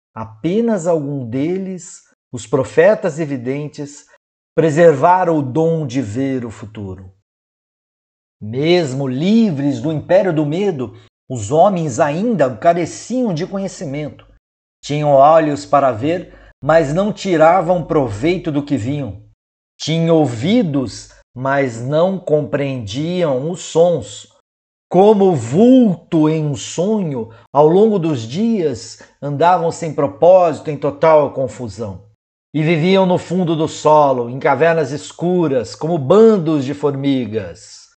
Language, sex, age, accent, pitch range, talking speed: Portuguese, male, 50-69, Brazilian, 130-170 Hz, 110 wpm